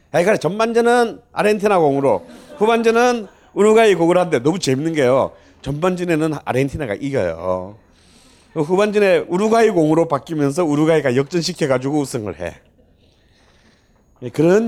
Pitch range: 105-175 Hz